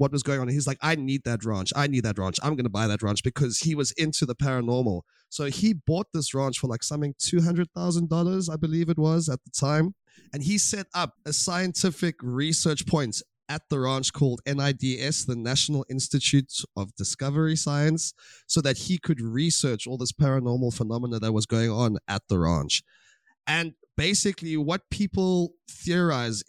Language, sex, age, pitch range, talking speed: English, male, 20-39, 125-160 Hz, 185 wpm